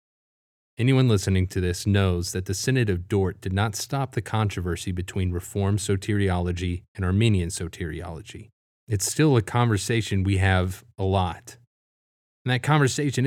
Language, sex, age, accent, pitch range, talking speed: English, male, 30-49, American, 95-120 Hz, 145 wpm